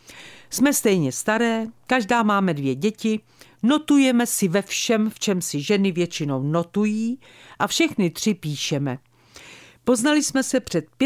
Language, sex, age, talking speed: Czech, female, 50-69, 135 wpm